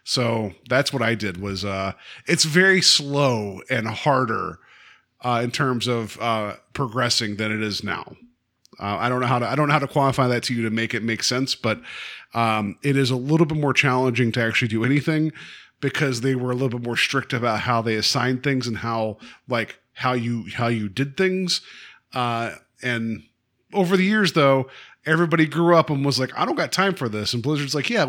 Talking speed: 210 wpm